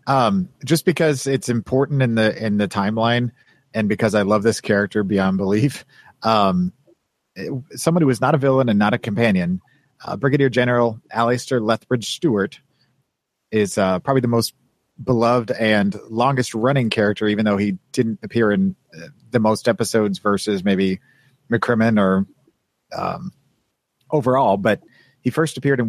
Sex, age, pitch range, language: male, 40-59, 105-130 Hz, English